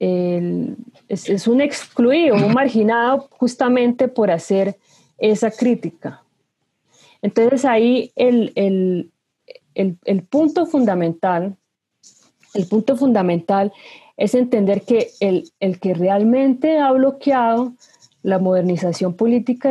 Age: 30-49